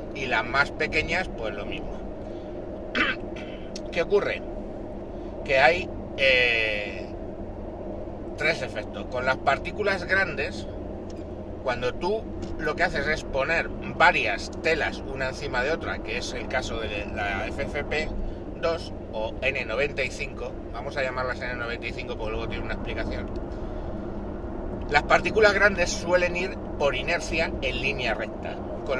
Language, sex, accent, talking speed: Spanish, male, Spanish, 125 wpm